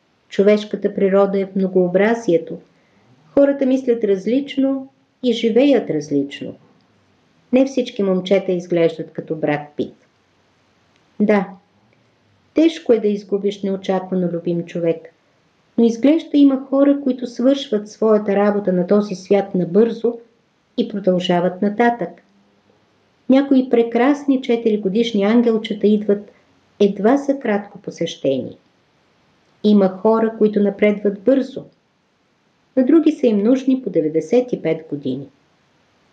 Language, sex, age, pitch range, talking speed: Bulgarian, female, 50-69, 180-235 Hz, 105 wpm